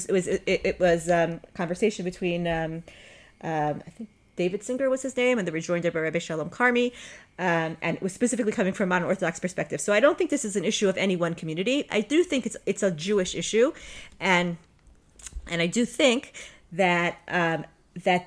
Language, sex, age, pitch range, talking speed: English, female, 30-49, 175-225 Hz, 215 wpm